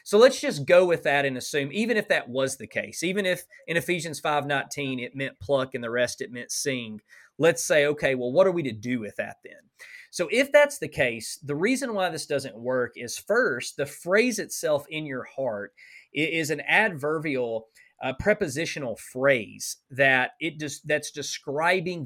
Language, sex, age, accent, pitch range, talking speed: English, male, 30-49, American, 125-165 Hz, 190 wpm